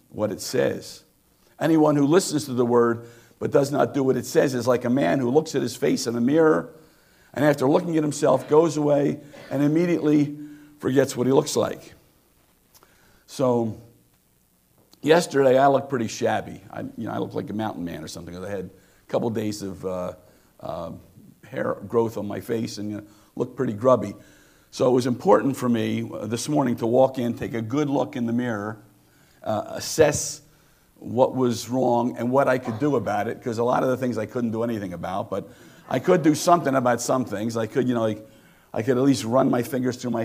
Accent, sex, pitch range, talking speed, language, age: American, male, 115-140 Hz, 210 wpm, English, 50-69